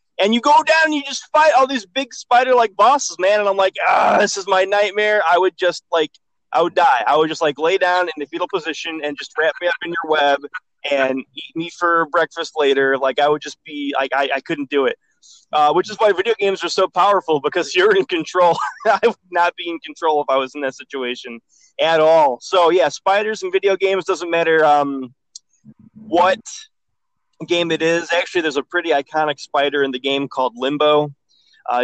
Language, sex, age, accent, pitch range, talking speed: English, male, 20-39, American, 140-195 Hz, 220 wpm